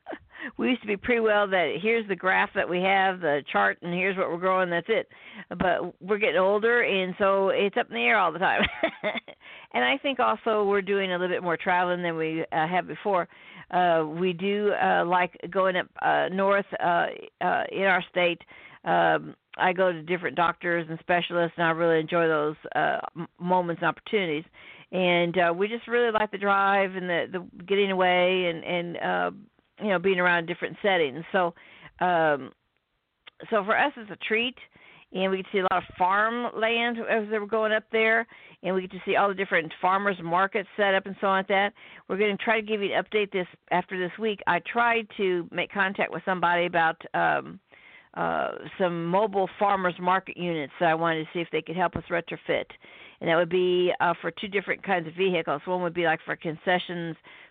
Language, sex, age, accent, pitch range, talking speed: English, female, 60-79, American, 170-205 Hz, 210 wpm